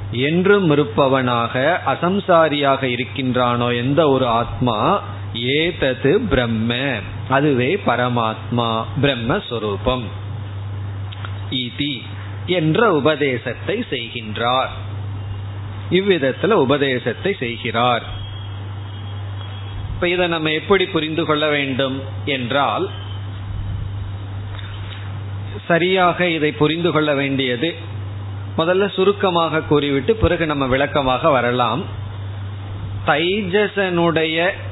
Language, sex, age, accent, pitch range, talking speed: Tamil, male, 30-49, native, 100-150 Hz, 50 wpm